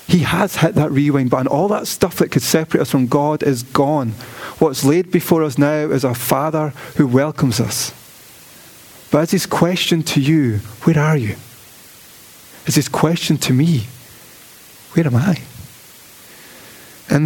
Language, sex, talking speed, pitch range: English, male, 160 wpm, 125-155 Hz